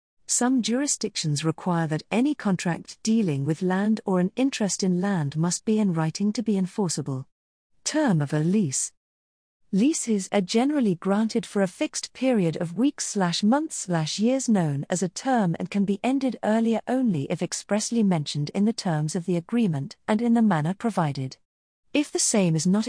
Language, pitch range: English, 160-220 Hz